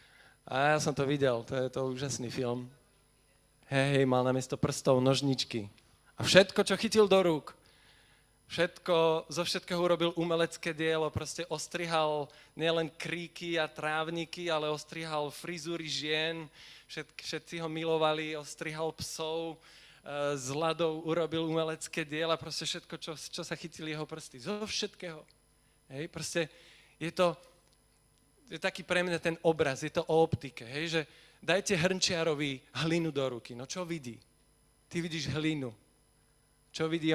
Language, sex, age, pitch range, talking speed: Slovak, male, 20-39, 145-175 Hz, 145 wpm